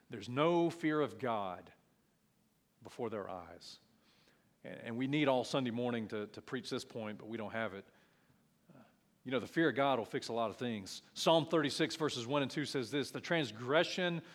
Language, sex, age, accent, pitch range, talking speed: English, male, 40-59, American, 125-165 Hz, 190 wpm